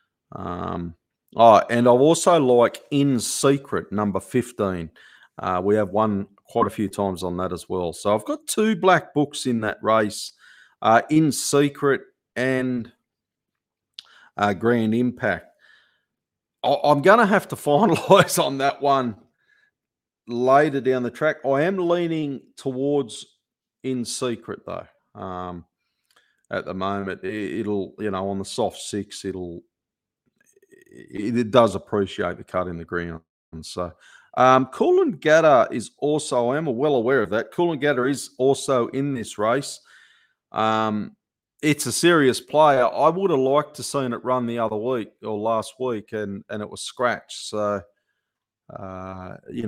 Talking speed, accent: 150 wpm, Australian